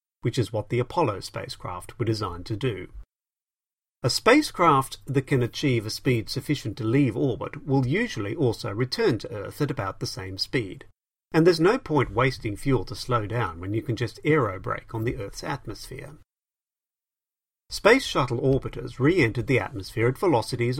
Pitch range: 105-135 Hz